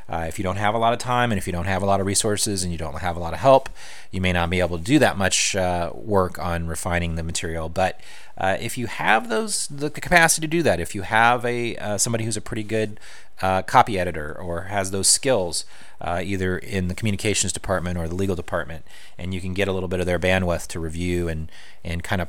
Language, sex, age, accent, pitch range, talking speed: English, male, 30-49, American, 85-115 Hz, 255 wpm